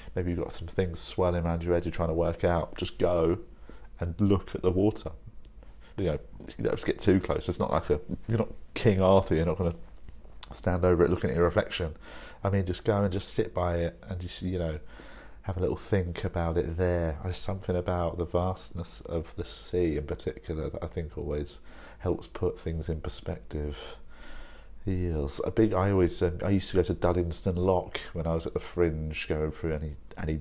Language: English